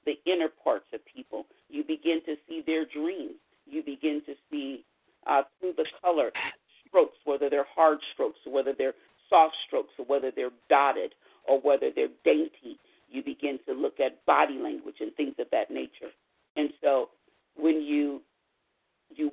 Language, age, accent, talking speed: English, 50-69, American, 170 wpm